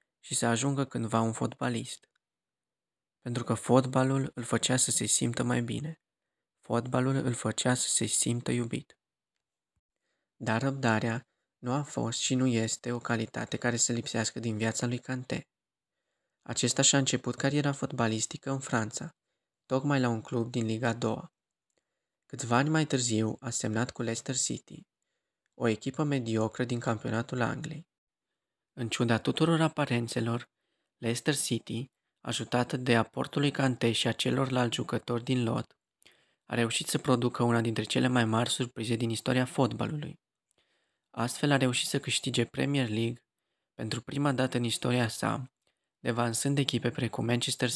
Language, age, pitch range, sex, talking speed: Romanian, 20-39, 115-135 Hz, male, 145 wpm